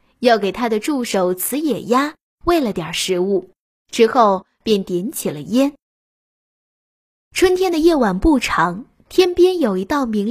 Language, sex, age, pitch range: Chinese, female, 10-29, 195-285 Hz